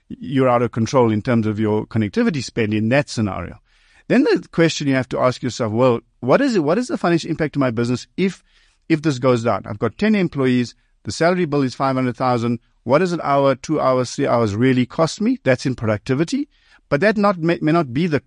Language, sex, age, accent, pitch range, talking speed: English, male, 50-69, South African, 115-155 Hz, 225 wpm